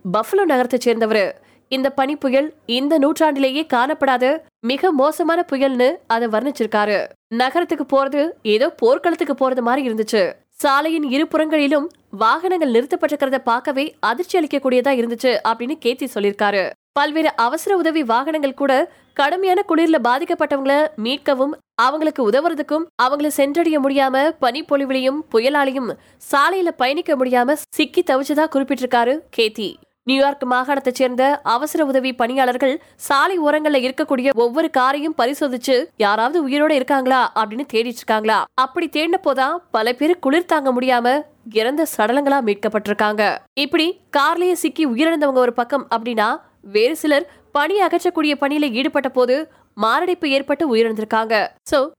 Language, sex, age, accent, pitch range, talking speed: Tamil, female, 20-39, native, 250-310 Hz, 100 wpm